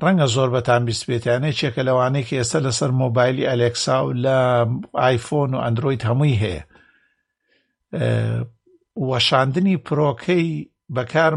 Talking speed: 110 wpm